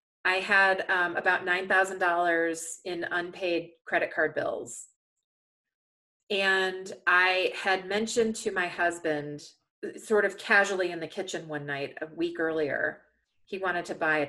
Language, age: English, 30-49